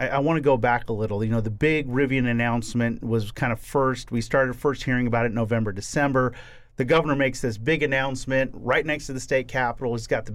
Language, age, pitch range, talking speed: English, 40-59, 120-145 Hz, 240 wpm